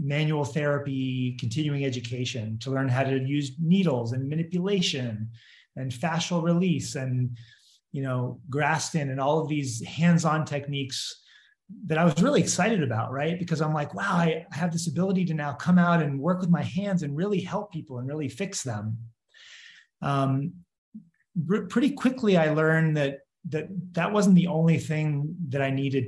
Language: English